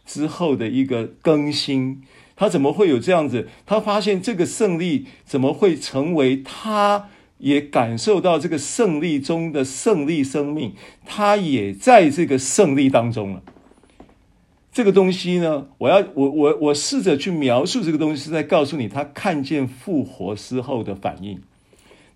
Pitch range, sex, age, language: 135-210 Hz, male, 50-69, Chinese